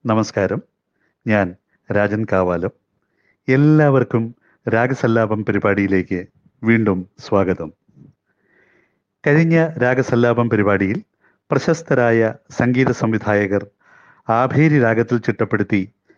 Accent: native